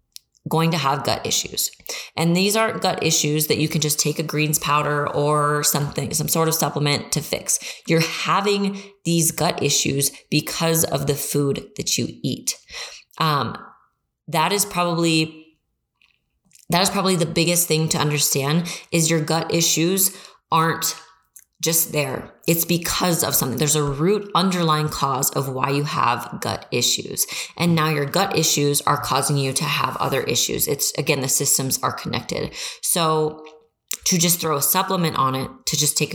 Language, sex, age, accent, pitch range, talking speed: English, female, 20-39, American, 145-165 Hz, 170 wpm